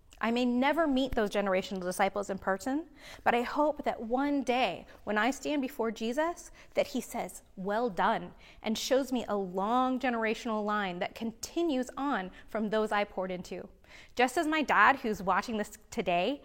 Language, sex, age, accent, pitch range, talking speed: English, female, 20-39, American, 205-280 Hz, 175 wpm